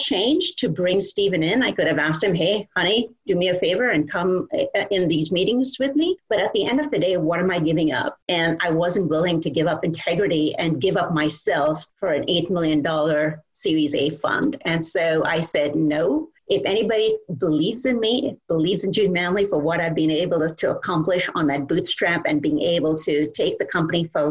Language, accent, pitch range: English, American, 165-210 Hz